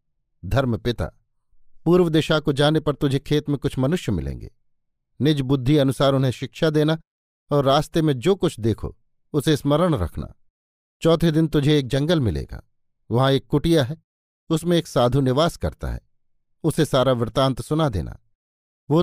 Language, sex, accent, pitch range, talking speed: Hindi, male, native, 115-155 Hz, 160 wpm